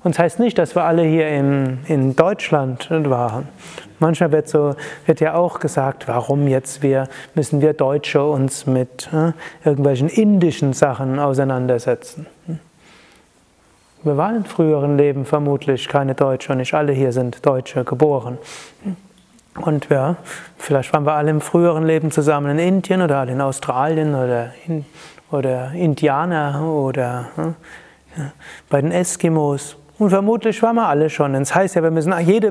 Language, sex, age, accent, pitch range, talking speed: German, male, 30-49, German, 140-175 Hz, 155 wpm